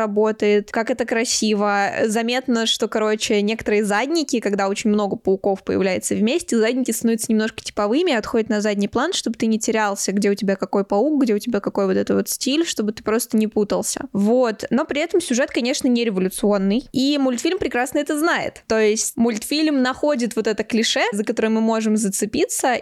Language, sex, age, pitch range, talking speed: Russian, female, 10-29, 210-255 Hz, 185 wpm